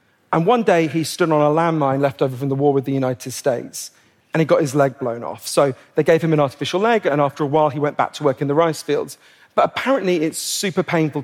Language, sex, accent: English, male, British